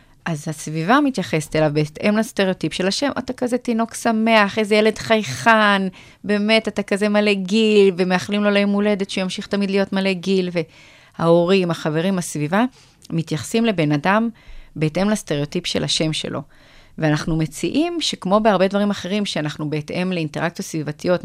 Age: 30-49